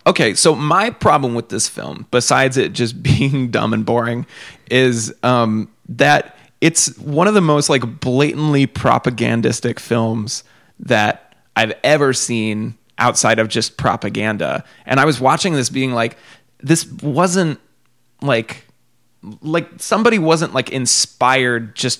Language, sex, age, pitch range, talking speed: English, male, 20-39, 120-150 Hz, 135 wpm